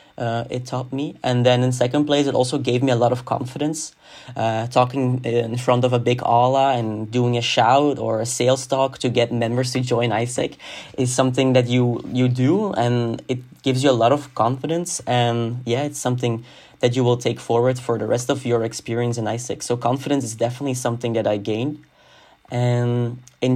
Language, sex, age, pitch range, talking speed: English, male, 20-39, 120-135 Hz, 205 wpm